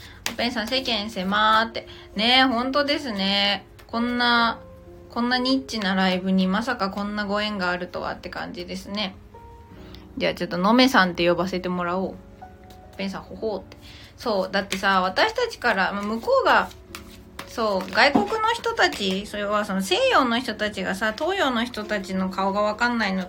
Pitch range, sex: 190-255 Hz, female